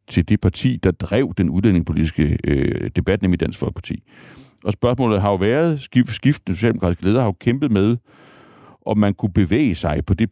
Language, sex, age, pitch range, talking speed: Danish, male, 60-79, 85-120 Hz, 190 wpm